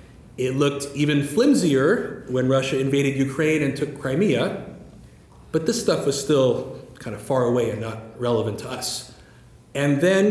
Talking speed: 155 wpm